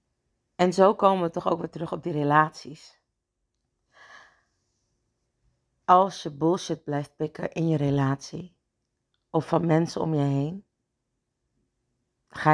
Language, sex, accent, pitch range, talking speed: Dutch, female, Dutch, 140-170 Hz, 125 wpm